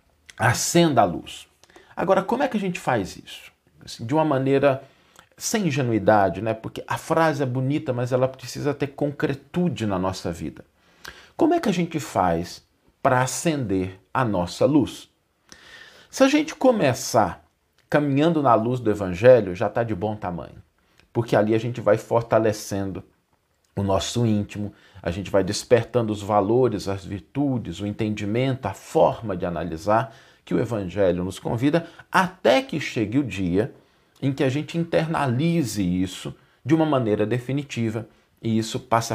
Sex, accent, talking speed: male, Brazilian, 155 wpm